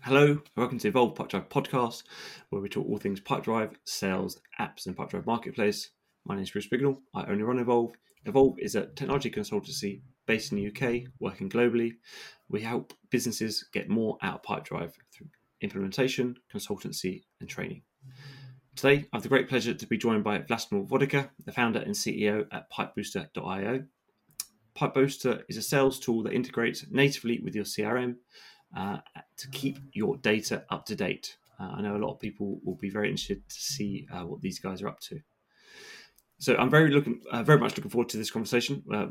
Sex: male